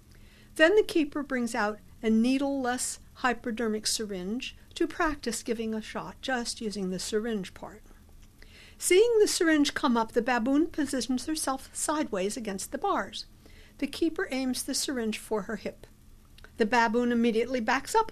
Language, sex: English, female